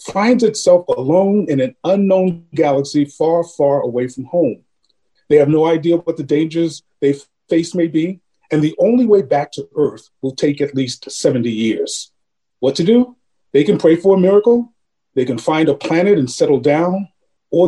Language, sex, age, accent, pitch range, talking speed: English, male, 40-59, American, 140-185 Hz, 185 wpm